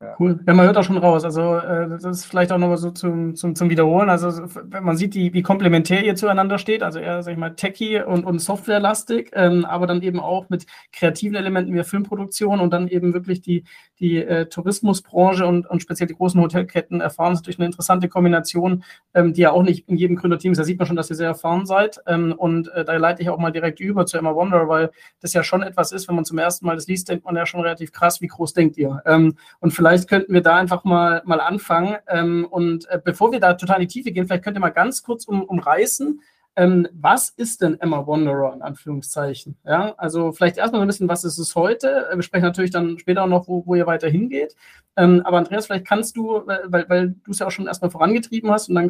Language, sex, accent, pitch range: German, male, German, 170-190 Hz